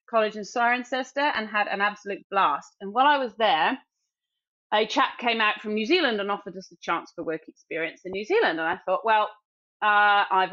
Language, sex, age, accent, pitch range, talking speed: English, female, 30-49, British, 185-235 Hz, 210 wpm